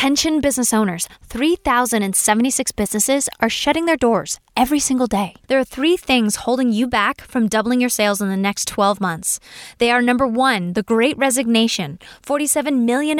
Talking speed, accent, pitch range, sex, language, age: 170 wpm, American, 205-270 Hz, female, English, 10-29